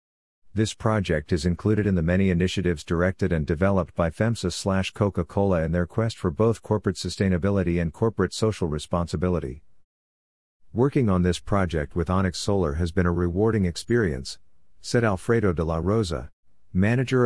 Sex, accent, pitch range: male, American, 85-100 Hz